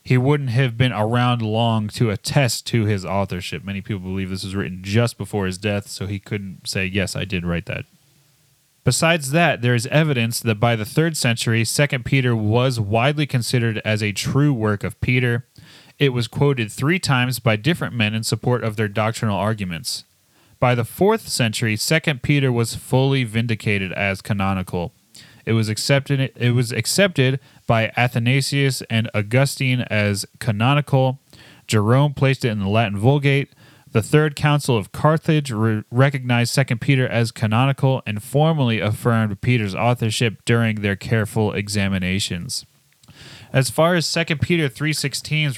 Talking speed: 155 wpm